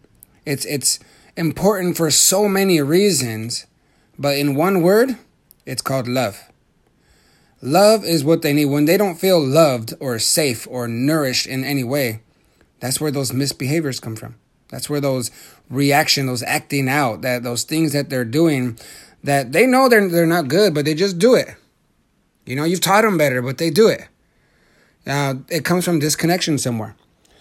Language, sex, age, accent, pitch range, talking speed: English, male, 30-49, American, 130-165 Hz, 170 wpm